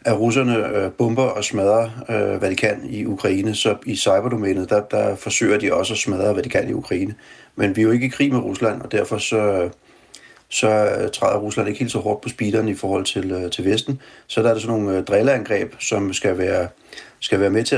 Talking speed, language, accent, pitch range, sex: 225 wpm, Danish, native, 95-115 Hz, male